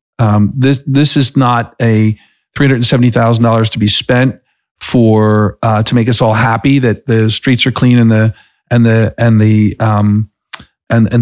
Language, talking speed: English, 165 wpm